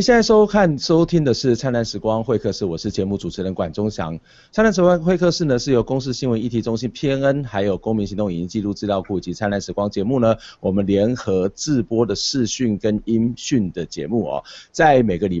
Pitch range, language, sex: 100-125 Hz, Chinese, male